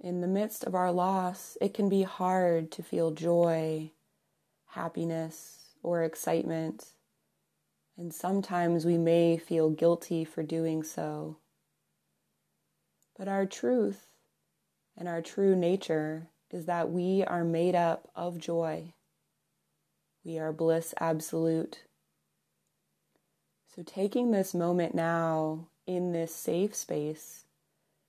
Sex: female